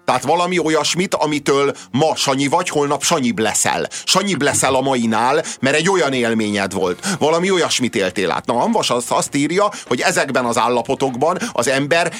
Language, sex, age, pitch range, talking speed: Hungarian, male, 30-49, 125-185 Hz, 165 wpm